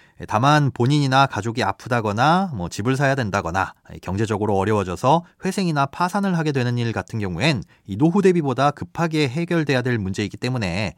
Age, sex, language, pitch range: 30-49, male, Korean, 110-165 Hz